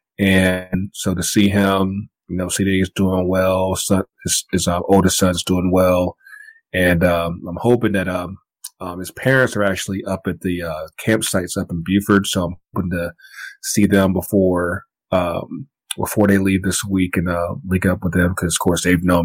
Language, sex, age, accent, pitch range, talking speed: English, male, 30-49, American, 90-105 Hz, 195 wpm